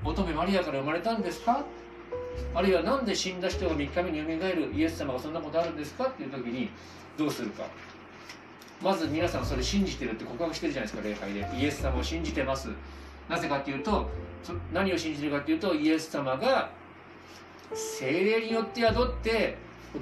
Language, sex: Japanese, male